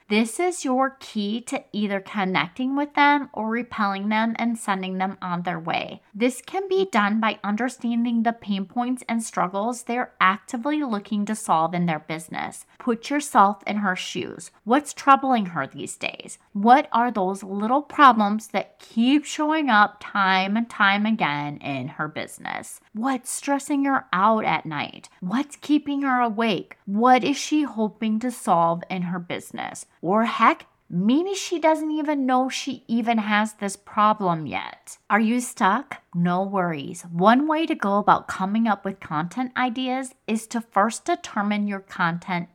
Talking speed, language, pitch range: 165 wpm, English, 195-260 Hz